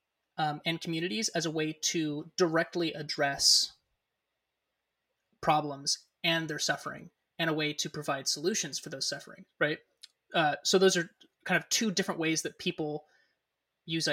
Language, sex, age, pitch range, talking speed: English, male, 20-39, 155-185 Hz, 150 wpm